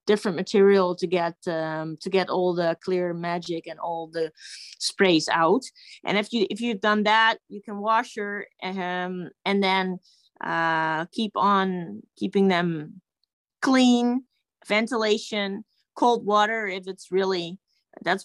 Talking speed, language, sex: 140 wpm, English, female